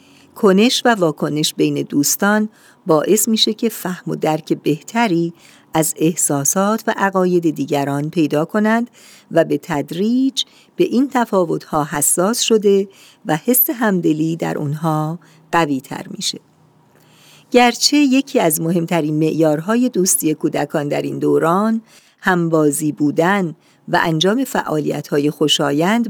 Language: Persian